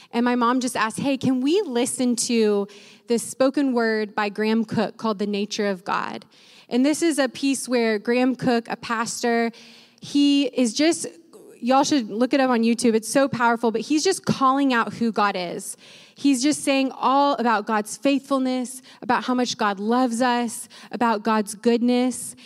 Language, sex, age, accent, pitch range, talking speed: English, female, 20-39, American, 215-265 Hz, 180 wpm